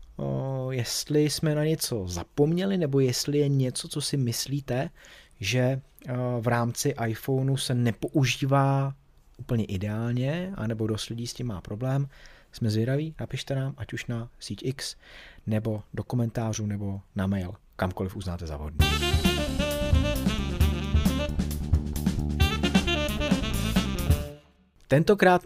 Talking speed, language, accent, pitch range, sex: 110 wpm, Czech, native, 100-145 Hz, male